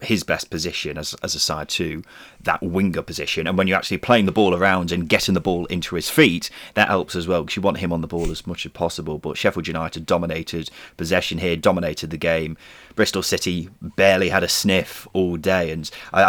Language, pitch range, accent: English, 85-110 Hz, British